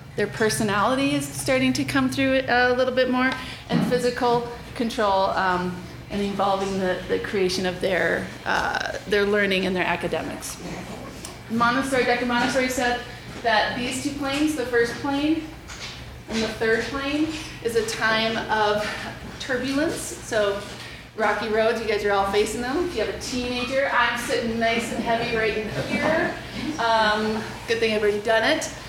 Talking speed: 160 wpm